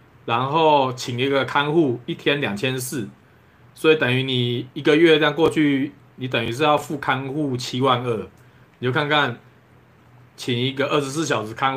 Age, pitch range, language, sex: 20-39, 115-150 Hz, Chinese, male